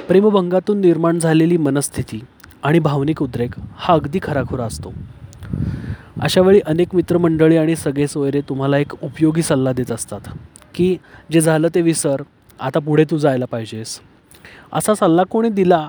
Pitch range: 135-175 Hz